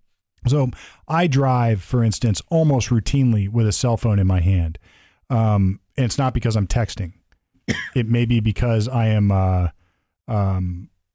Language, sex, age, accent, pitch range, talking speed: English, male, 40-59, American, 100-130 Hz, 155 wpm